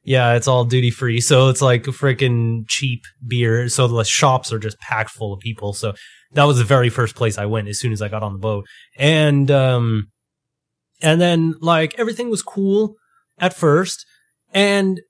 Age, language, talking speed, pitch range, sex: 20-39, English, 195 wpm, 120-180 Hz, male